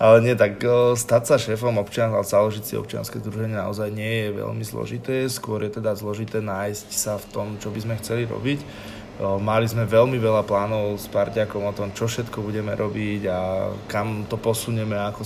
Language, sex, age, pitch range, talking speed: Slovak, male, 20-39, 105-115 Hz, 185 wpm